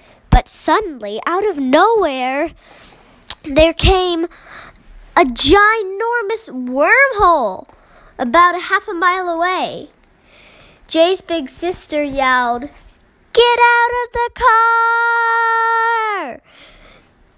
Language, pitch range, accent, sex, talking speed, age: English, 260-365 Hz, American, female, 85 wpm, 10-29